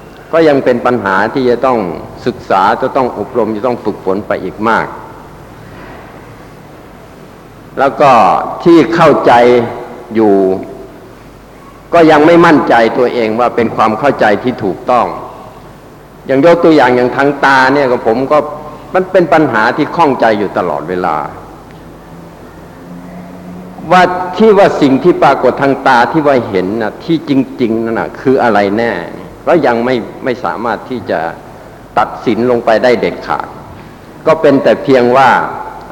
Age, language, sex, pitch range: 60-79, Thai, male, 110-150 Hz